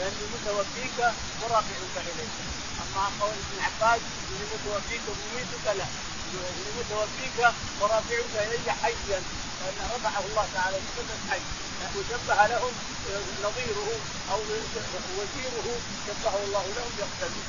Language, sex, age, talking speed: Arabic, male, 40-59, 105 wpm